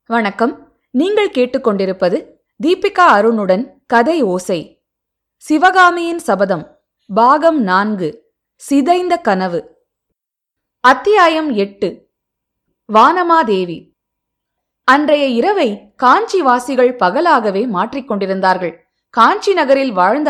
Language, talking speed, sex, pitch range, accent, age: Tamil, 70 wpm, female, 205-290 Hz, native, 20-39